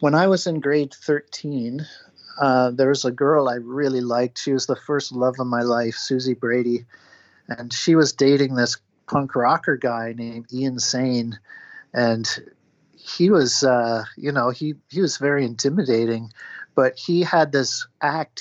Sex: male